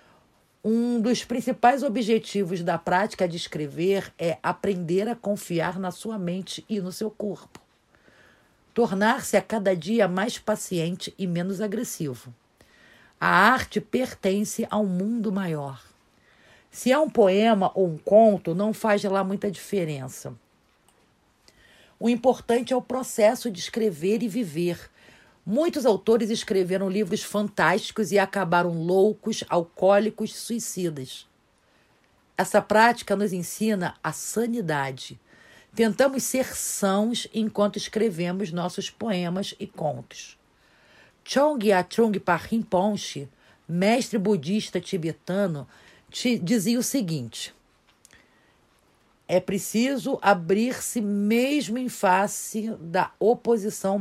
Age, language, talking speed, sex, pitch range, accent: 50-69, Portuguese, 110 wpm, female, 180-225 Hz, Brazilian